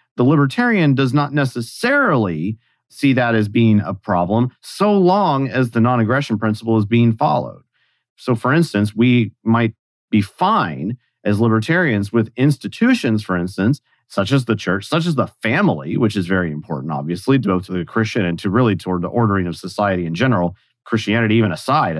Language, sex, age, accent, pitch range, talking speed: English, male, 40-59, American, 100-130 Hz, 170 wpm